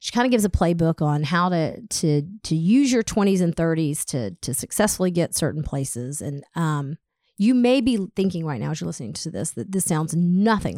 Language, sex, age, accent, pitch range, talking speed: English, female, 40-59, American, 160-200 Hz, 215 wpm